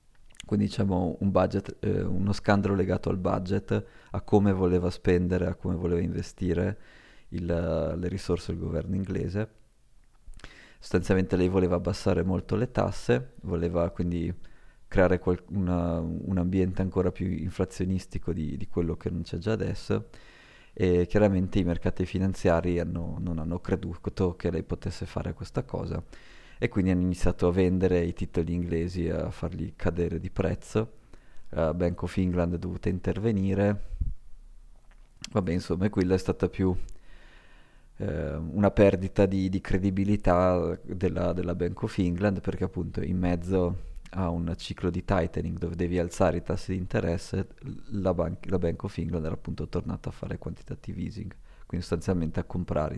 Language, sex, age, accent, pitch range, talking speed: Italian, male, 20-39, native, 85-95 Hz, 155 wpm